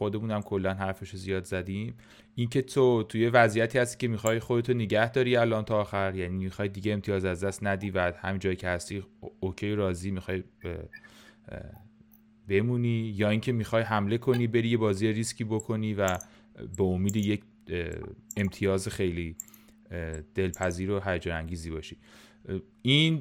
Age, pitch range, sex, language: 30-49, 95-115 Hz, male, Persian